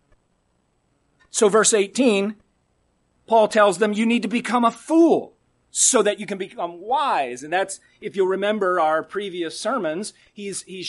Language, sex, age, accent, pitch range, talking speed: English, male, 40-59, American, 170-225 Hz, 155 wpm